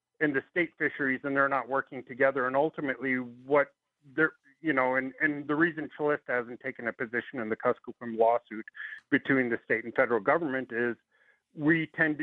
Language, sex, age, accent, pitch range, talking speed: English, male, 40-59, American, 115-140 Hz, 180 wpm